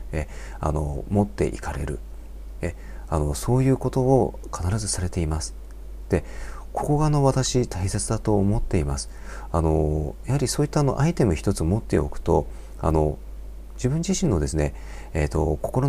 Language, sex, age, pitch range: Japanese, male, 40-59, 75-110 Hz